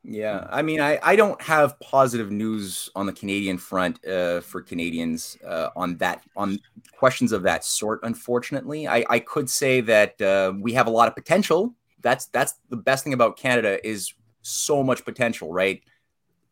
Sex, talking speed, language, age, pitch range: male, 180 wpm, English, 30-49, 100-125 Hz